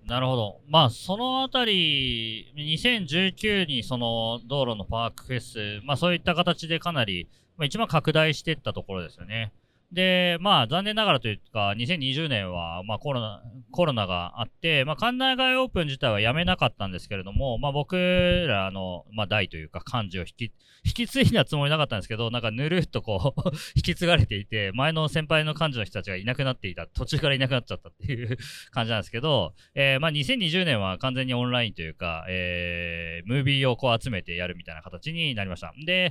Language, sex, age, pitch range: Japanese, male, 40-59, 110-175 Hz